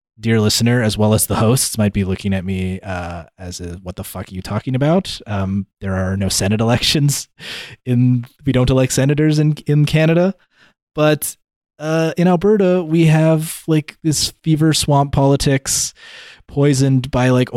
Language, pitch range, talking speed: English, 105-140 Hz, 165 wpm